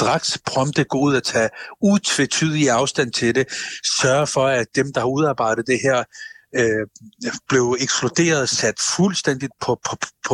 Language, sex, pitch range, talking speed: Danish, male, 115-150 Hz, 145 wpm